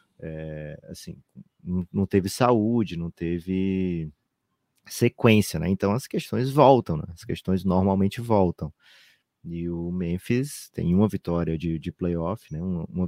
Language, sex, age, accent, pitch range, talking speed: Portuguese, male, 30-49, Brazilian, 85-120 Hz, 140 wpm